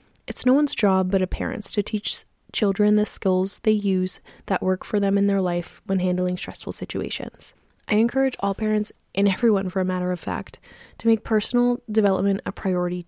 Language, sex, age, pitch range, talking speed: English, female, 10-29, 190-230 Hz, 195 wpm